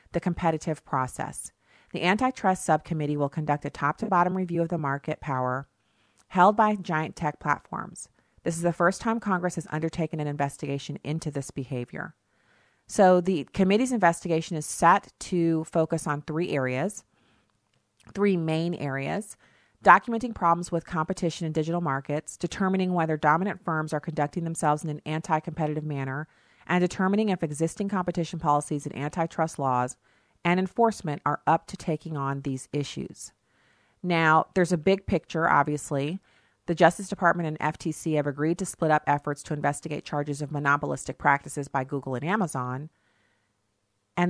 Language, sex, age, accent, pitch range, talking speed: English, female, 40-59, American, 140-175 Hz, 155 wpm